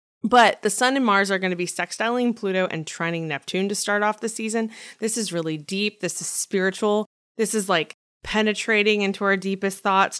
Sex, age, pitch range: female, 20-39, 175-215 Hz